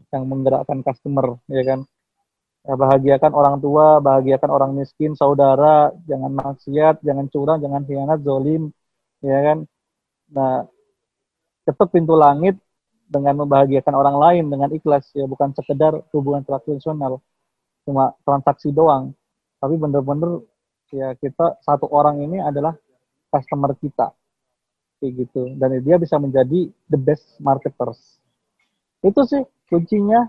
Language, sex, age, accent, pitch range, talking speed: Indonesian, male, 20-39, native, 140-170 Hz, 125 wpm